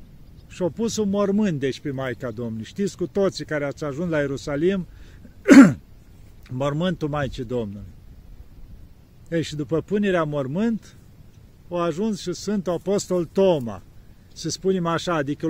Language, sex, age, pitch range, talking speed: Romanian, male, 50-69, 115-170 Hz, 135 wpm